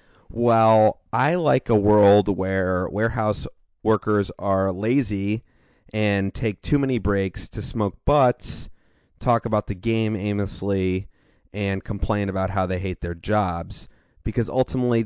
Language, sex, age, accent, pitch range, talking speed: English, male, 30-49, American, 95-115 Hz, 130 wpm